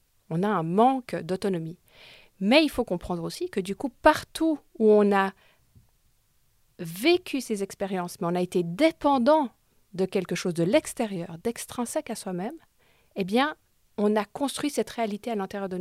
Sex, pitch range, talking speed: female, 180-235 Hz, 165 wpm